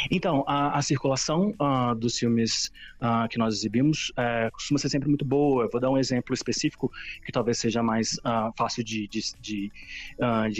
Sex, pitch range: male, 115-125 Hz